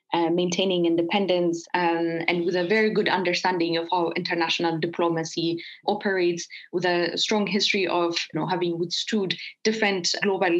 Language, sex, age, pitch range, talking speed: English, female, 20-39, 170-205 Hz, 135 wpm